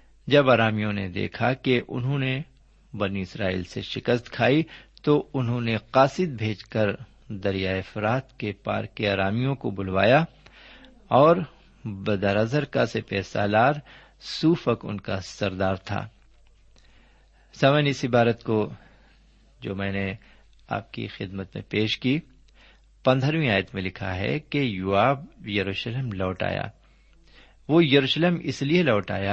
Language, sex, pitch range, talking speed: Urdu, male, 100-135 Hz, 135 wpm